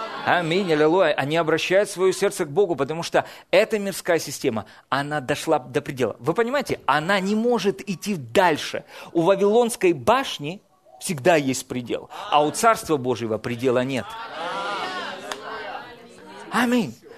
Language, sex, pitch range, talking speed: Russian, male, 140-200 Hz, 130 wpm